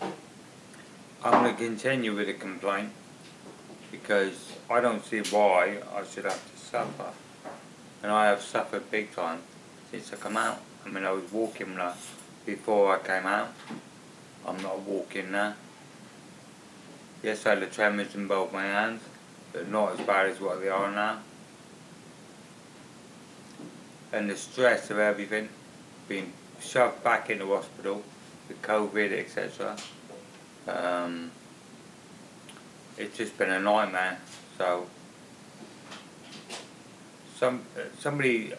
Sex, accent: male, British